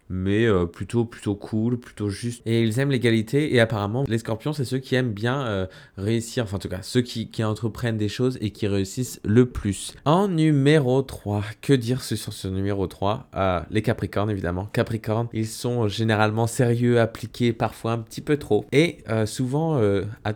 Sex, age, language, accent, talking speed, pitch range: male, 20-39, French, French, 190 wpm, 100-125 Hz